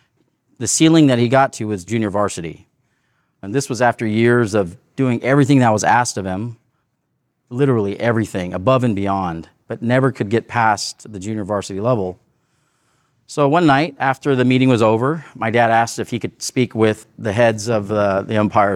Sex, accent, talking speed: male, American, 185 wpm